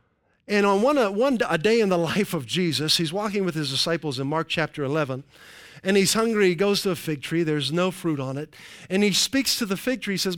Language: English